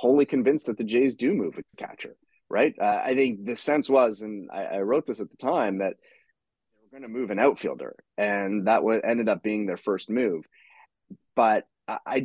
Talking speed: 205 wpm